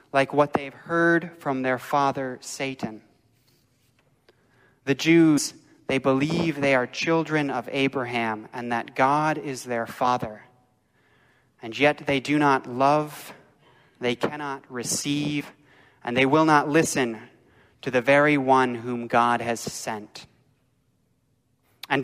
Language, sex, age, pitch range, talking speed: English, male, 30-49, 125-145 Hz, 125 wpm